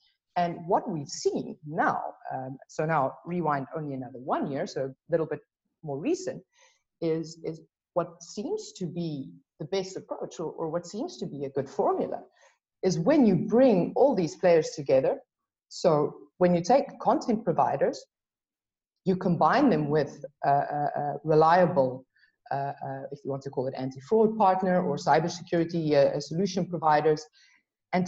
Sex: female